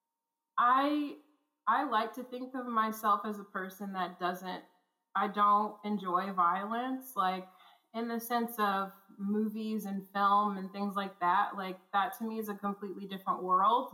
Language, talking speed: English, 160 wpm